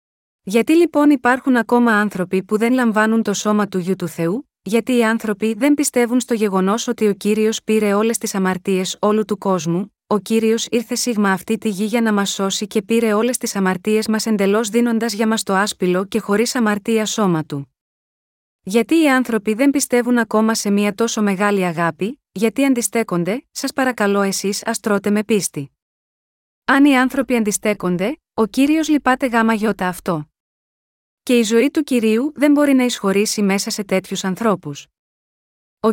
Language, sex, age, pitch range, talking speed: Greek, female, 30-49, 195-240 Hz, 170 wpm